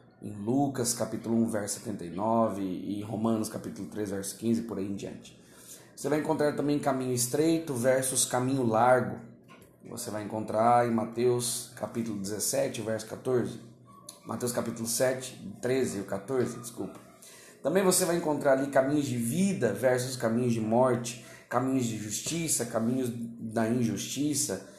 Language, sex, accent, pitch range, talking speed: Portuguese, male, Brazilian, 115-135 Hz, 145 wpm